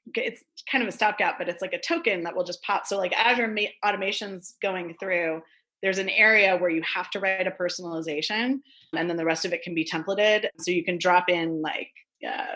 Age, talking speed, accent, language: 30-49, 225 wpm, American, English